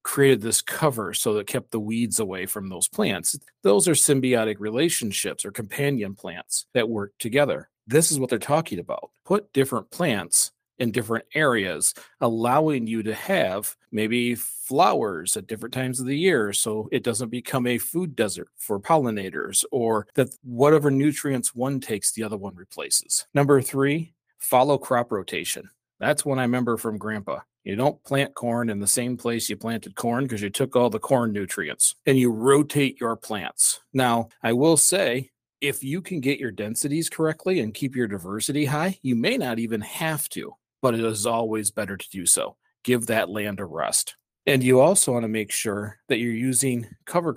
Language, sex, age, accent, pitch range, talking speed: English, male, 40-59, American, 110-140 Hz, 185 wpm